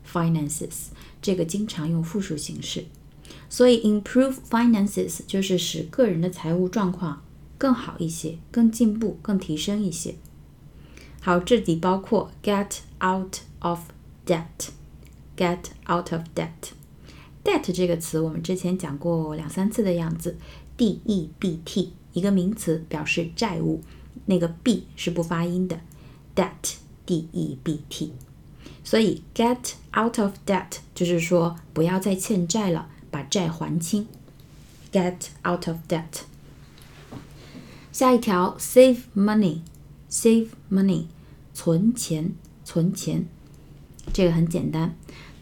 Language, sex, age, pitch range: Chinese, female, 20-39, 165-205 Hz